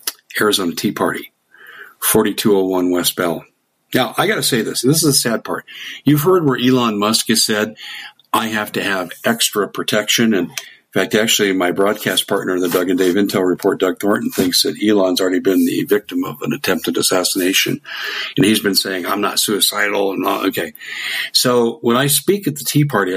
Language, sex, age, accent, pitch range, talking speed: English, male, 50-69, American, 95-130 Hz, 190 wpm